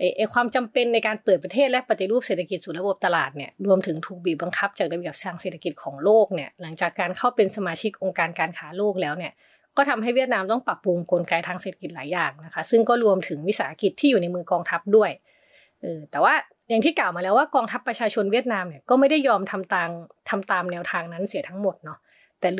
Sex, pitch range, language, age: female, 170-220 Hz, Thai, 20-39